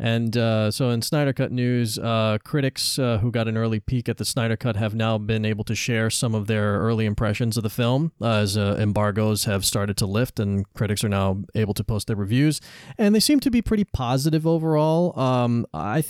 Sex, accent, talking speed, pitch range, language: male, American, 225 wpm, 110-135 Hz, English